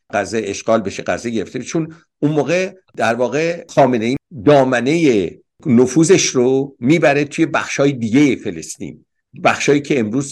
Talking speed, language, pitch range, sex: 135 wpm, English, 115-160 Hz, male